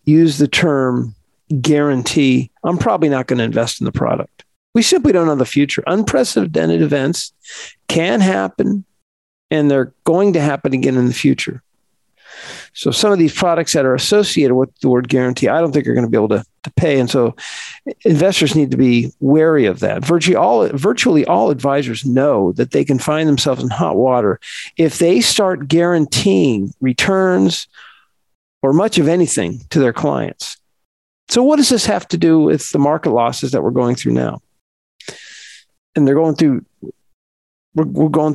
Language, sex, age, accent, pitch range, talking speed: English, male, 50-69, American, 125-165 Hz, 175 wpm